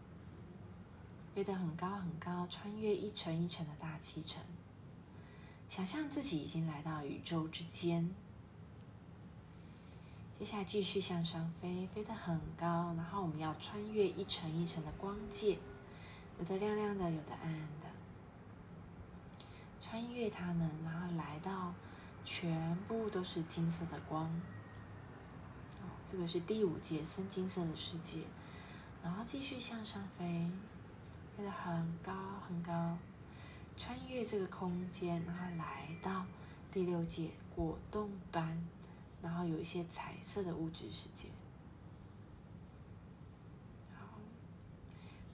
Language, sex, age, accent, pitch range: Chinese, female, 30-49, native, 165-195 Hz